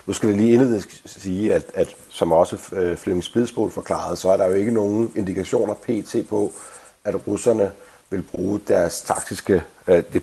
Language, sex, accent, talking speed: Danish, male, native, 170 wpm